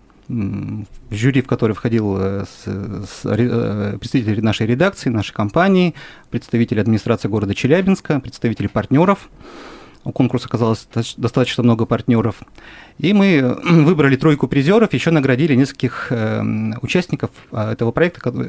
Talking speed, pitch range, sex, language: 115 wpm, 115-145 Hz, male, Russian